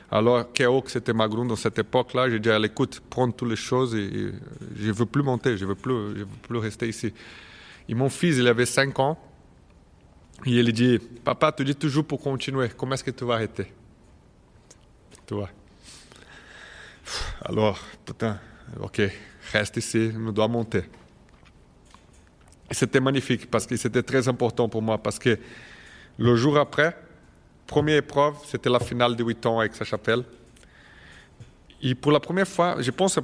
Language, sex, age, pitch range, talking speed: French, male, 30-49, 110-135 Hz, 170 wpm